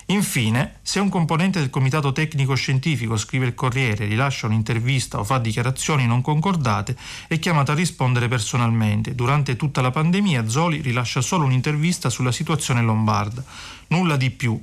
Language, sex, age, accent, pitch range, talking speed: Italian, male, 40-59, native, 110-135 Hz, 150 wpm